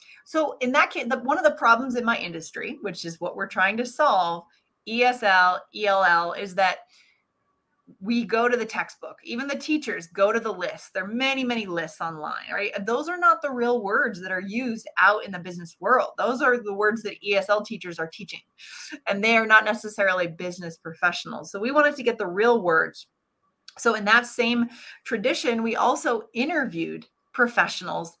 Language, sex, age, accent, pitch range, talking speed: English, female, 30-49, American, 185-235 Hz, 190 wpm